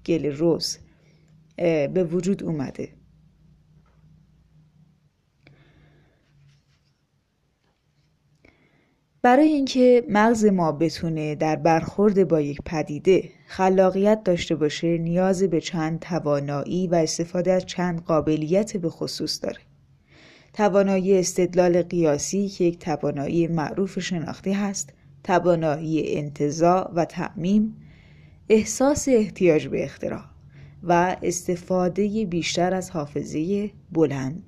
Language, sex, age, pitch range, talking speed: Persian, female, 10-29, 155-195 Hz, 90 wpm